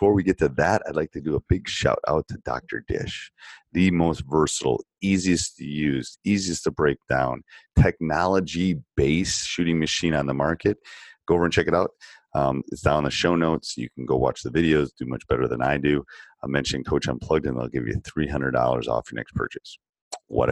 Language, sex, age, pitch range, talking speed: English, male, 30-49, 70-85 Hz, 210 wpm